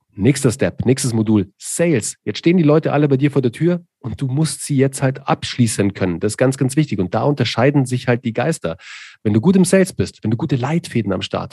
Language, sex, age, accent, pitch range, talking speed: German, male, 40-59, German, 110-140 Hz, 245 wpm